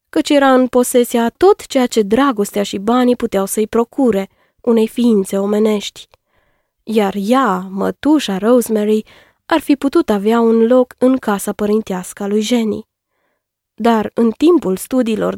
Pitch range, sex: 205-255 Hz, female